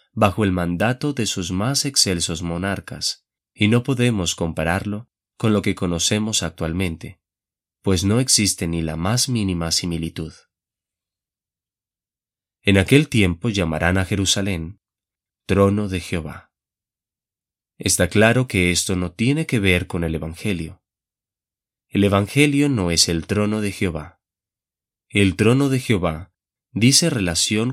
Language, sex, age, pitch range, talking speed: Spanish, male, 30-49, 90-110 Hz, 130 wpm